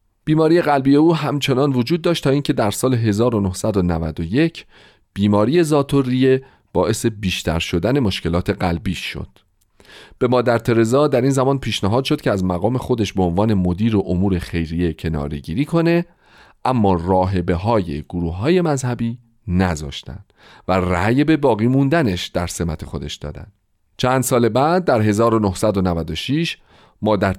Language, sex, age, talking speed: Persian, male, 40-59, 135 wpm